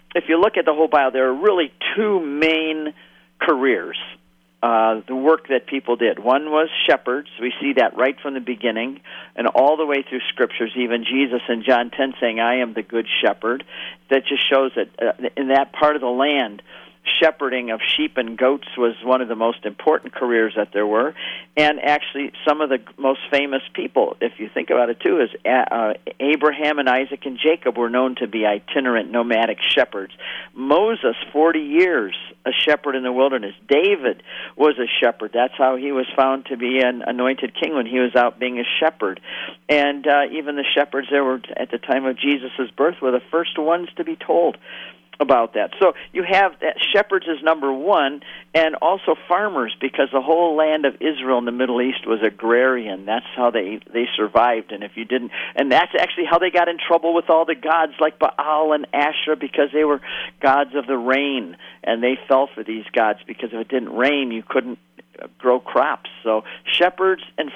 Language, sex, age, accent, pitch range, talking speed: English, male, 50-69, American, 120-150 Hz, 200 wpm